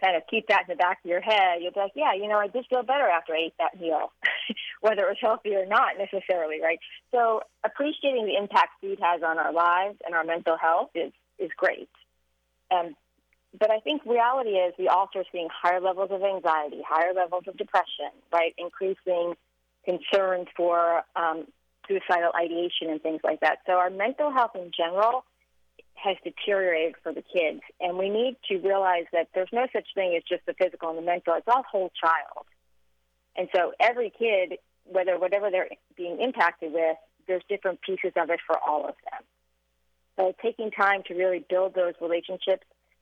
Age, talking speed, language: 30-49, 190 wpm, English